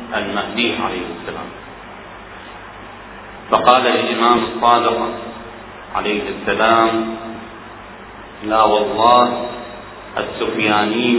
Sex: male